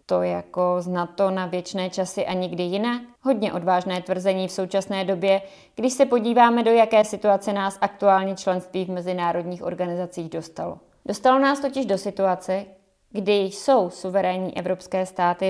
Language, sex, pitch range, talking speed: Czech, female, 180-210 Hz, 150 wpm